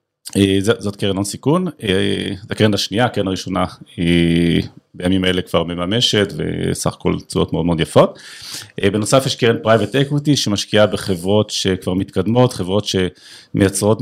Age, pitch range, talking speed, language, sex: 40-59, 95-120 Hz, 145 wpm, Hebrew, male